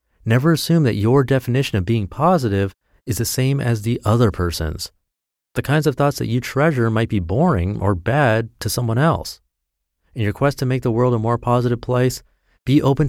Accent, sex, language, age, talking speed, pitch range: American, male, English, 30-49, 195 wpm, 100-130 Hz